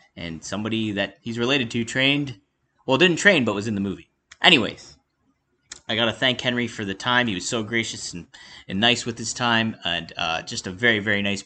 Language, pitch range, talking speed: English, 95-120 Hz, 210 wpm